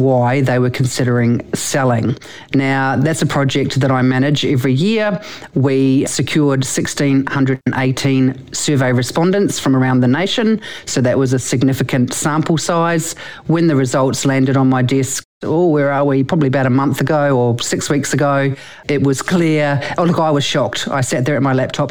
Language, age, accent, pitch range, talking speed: English, 40-59, Australian, 130-145 Hz, 175 wpm